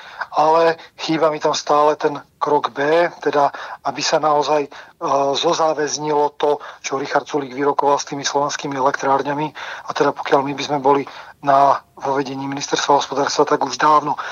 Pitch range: 140-150 Hz